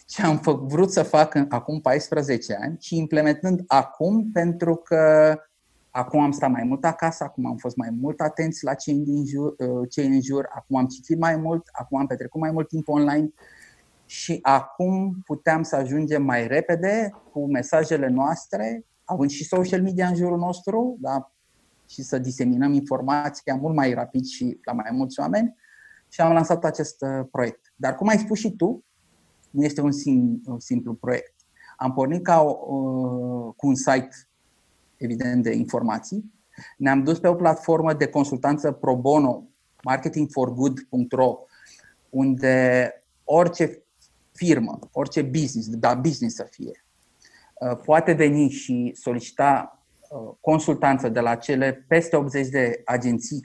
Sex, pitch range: male, 130-165 Hz